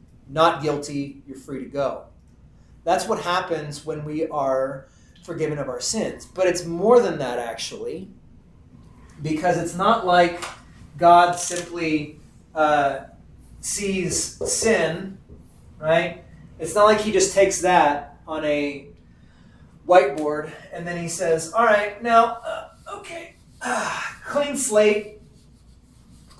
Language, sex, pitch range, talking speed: English, male, 150-185 Hz, 125 wpm